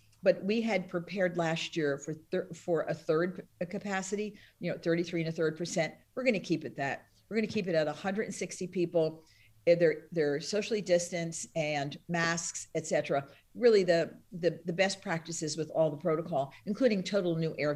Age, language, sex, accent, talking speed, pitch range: 50-69, English, female, American, 185 wpm, 150-185 Hz